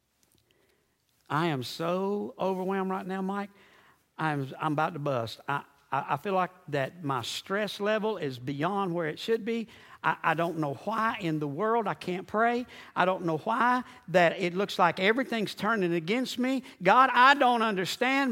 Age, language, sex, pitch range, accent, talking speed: 60-79, English, male, 150-230 Hz, American, 175 wpm